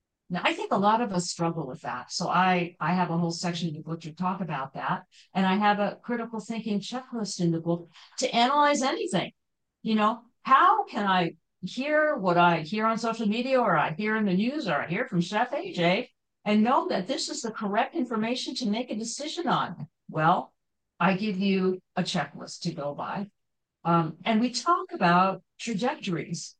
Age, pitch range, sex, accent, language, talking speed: 50-69, 175-235 Hz, female, American, English, 200 wpm